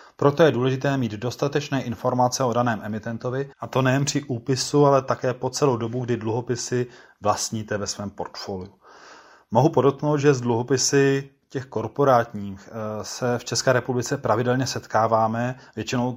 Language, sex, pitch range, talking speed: Czech, male, 115-130 Hz, 145 wpm